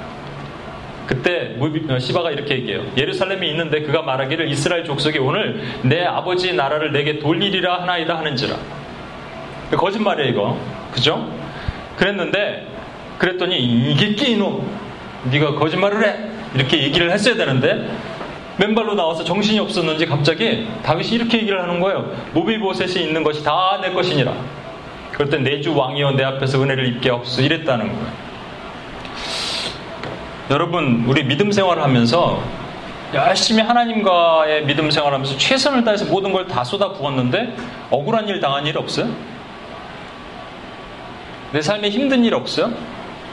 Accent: native